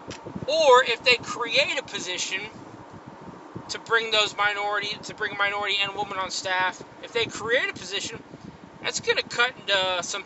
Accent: American